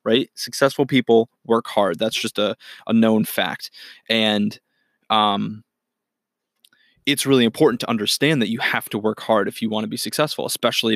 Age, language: 20-39, English